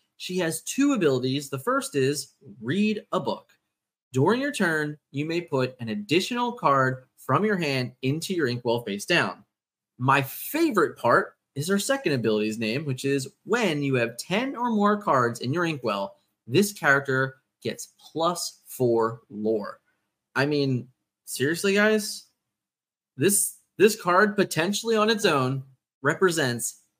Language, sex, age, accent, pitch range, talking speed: English, male, 20-39, American, 130-185 Hz, 145 wpm